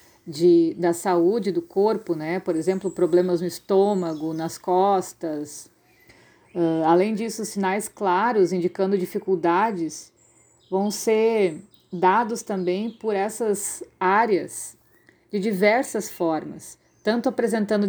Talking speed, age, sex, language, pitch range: 100 wpm, 50-69, female, Portuguese, 180-215 Hz